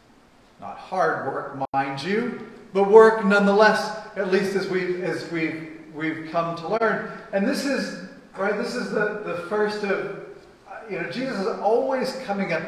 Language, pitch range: English, 135-195 Hz